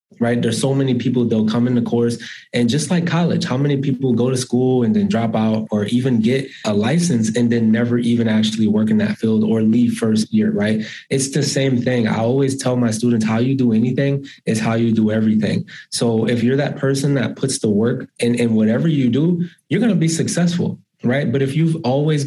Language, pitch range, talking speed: English, 110-145 Hz, 230 wpm